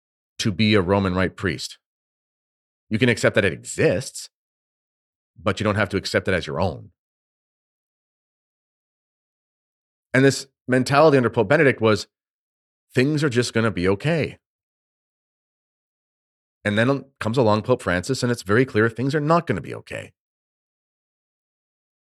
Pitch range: 95-125 Hz